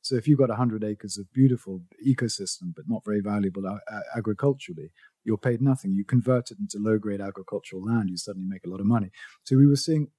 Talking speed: 210 wpm